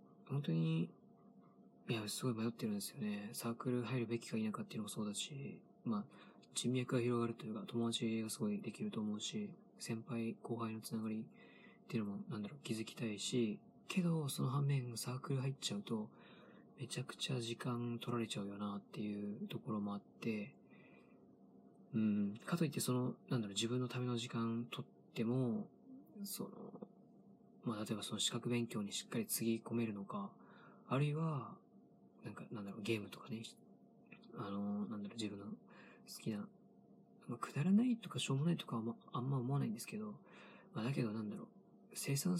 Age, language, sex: 20-39, Japanese, male